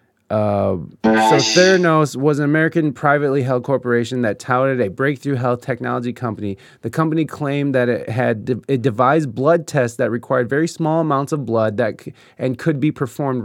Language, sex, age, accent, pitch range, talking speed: English, male, 20-39, American, 120-150 Hz, 180 wpm